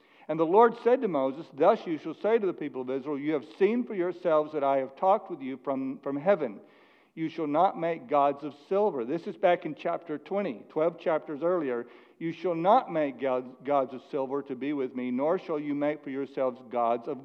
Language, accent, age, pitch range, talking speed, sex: English, American, 60-79, 135-190 Hz, 225 wpm, male